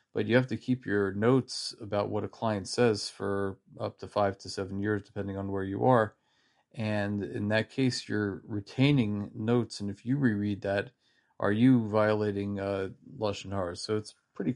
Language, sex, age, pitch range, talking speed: English, male, 30-49, 100-115 Hz, 195 wpm